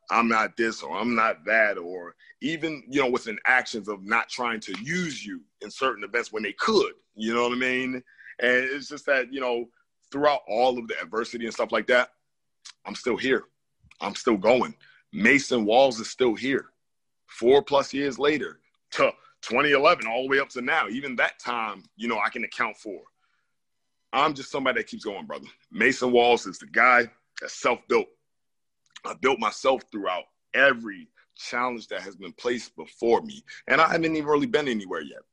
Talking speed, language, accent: 190 wpm, English, American